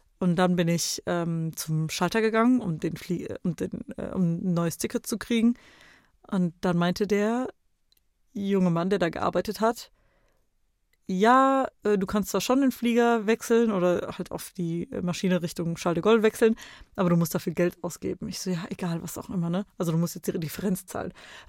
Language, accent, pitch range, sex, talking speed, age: German, German, 185-235 Hz, female, 195 wpm, 30-49